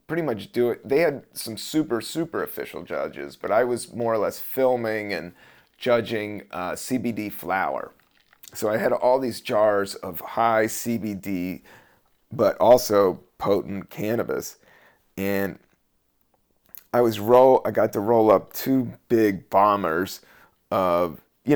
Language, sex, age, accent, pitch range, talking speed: English, male, 30-49, American, 100-125 Hz, 140 wpm